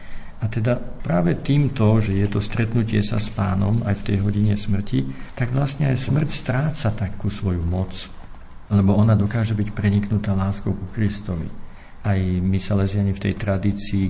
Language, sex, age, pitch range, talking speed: Slovak, male, 50-69, 95-115 Hz, 160 wpm